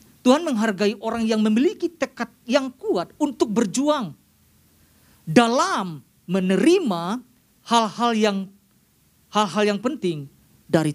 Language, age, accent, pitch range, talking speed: Indonesian, 40-59, native, 185-240 Hz, 100 wpm